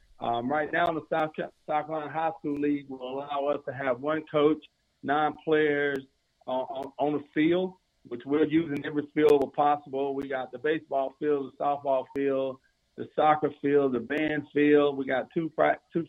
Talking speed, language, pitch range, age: 180 wpm, English, 135-155 Hz, 50-69